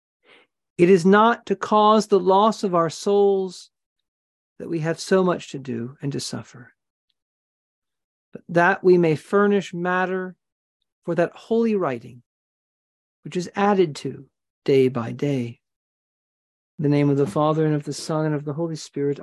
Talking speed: 160 wpm